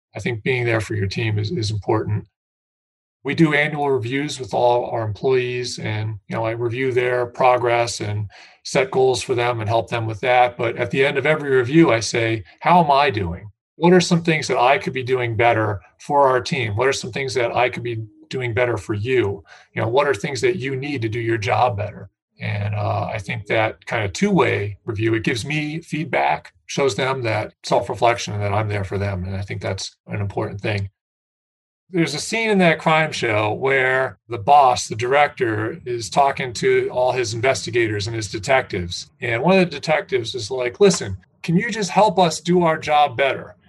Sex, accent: male, American